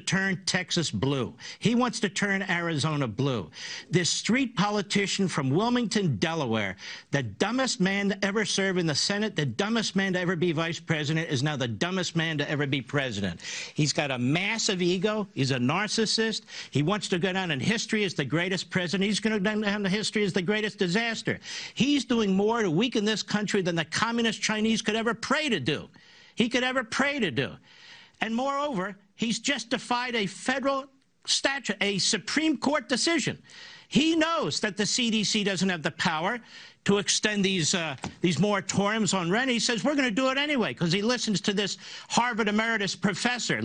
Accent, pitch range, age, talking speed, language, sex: American, 180-240 Hz, 50-69, 185 wpm, English, male